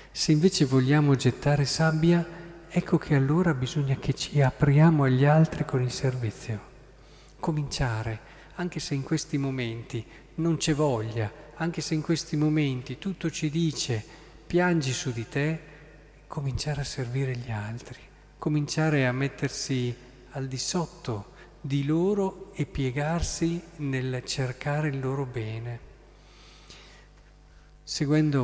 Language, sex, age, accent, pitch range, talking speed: Italian, male, 40-59, native, 125-155 Hz, 125 wpm